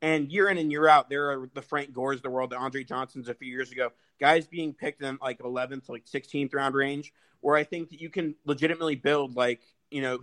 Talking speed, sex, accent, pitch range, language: 250 wpm, male, American, 125-140 Hz, English